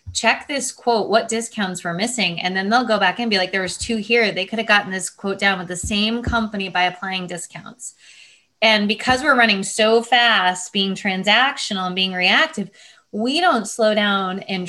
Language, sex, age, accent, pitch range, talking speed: English, female, 20-39, American, 180-220 Hz, 200 wpm